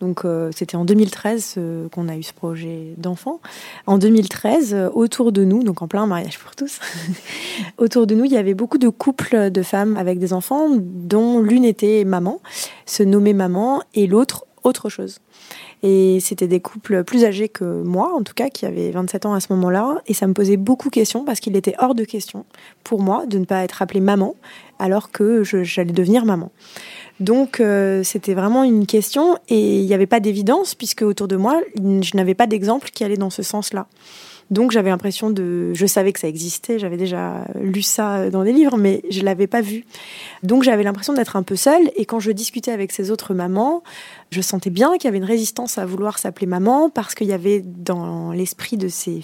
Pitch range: 190-225 Hz